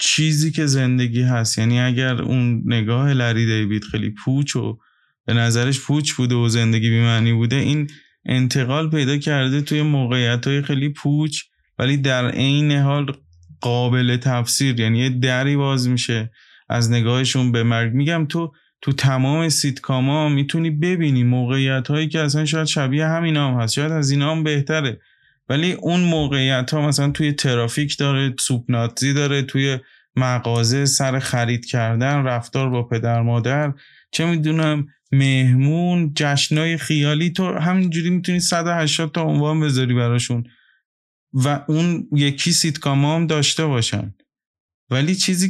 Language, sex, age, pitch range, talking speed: Persian, male, 20-39, 125-150 Hz, 140 wpm